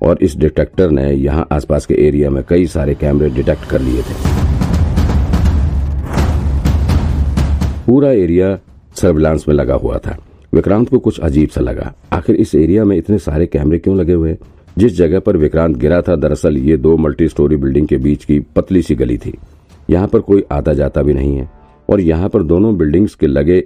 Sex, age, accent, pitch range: male, 50-69, native, 75-90 Hz